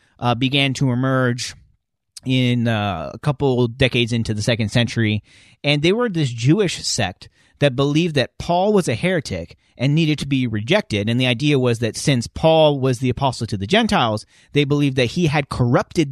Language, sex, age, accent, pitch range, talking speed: English, male, 30-49, American, 115-150 Hz, 185 wpm